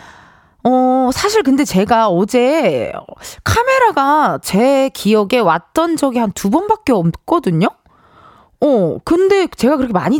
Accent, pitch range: native, 210-310 Hz